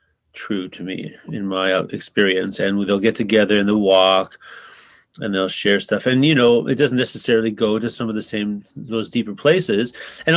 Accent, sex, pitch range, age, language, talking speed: American, male, 100-125 Hz, 30-49, English, 190 wpm